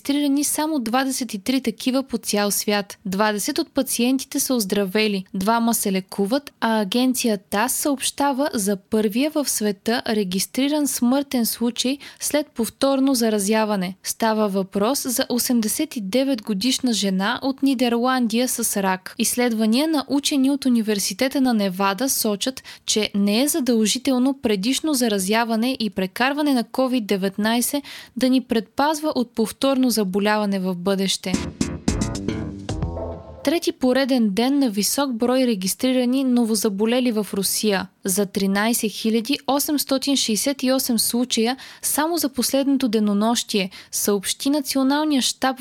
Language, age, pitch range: Bulgarian, 20-39, 210-265 Hz